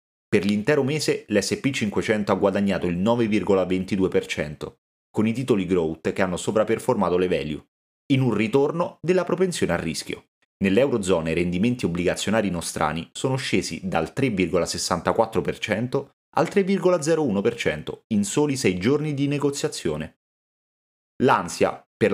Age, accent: 30-49, native